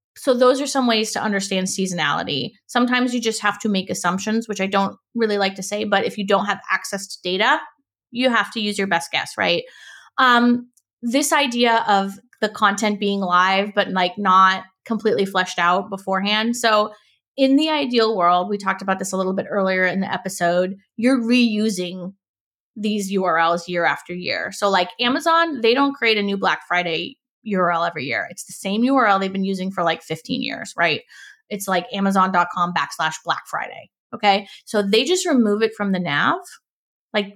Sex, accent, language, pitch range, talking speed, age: female, American, English, 185-225 Hz, 190 wpm, 20-39